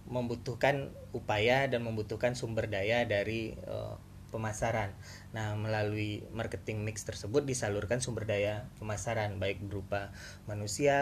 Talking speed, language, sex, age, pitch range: 115 wpm, Indonesian, male, 20-39, 100-130 Hz